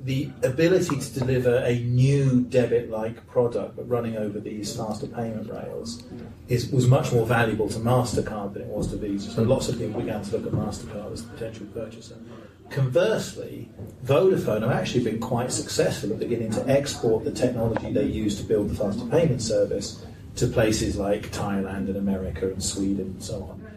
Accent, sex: British, male